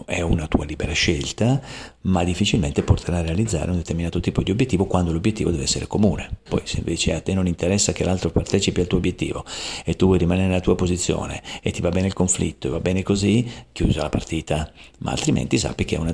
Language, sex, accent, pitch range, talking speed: Italian, male, native, 80-105 Hz, 220 wpm